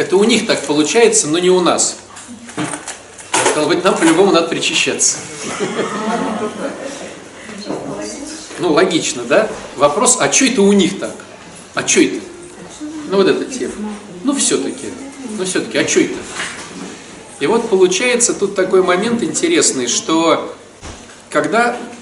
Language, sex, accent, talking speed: Russian, male, native, 130 wpm